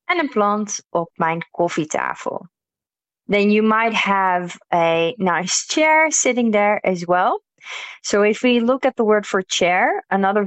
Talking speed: 160 wpm